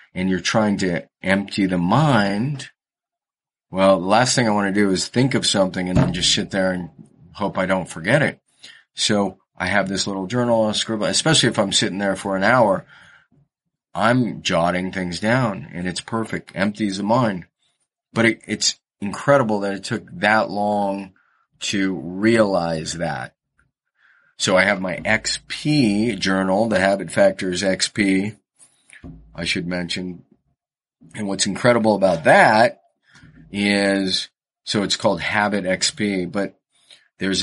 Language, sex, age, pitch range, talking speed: English, male, 30-49, 95-115 Hz, 150 wpm